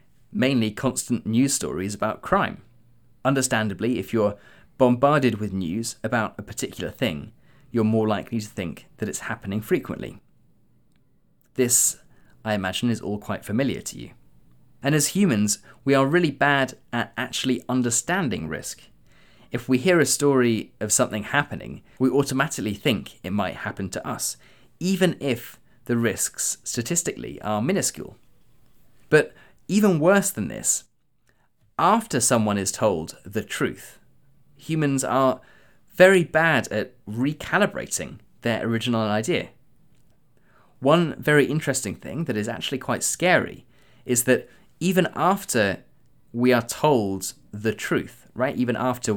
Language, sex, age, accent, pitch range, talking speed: English, male, 20-39, British, 110-140 Hz, 135 wpm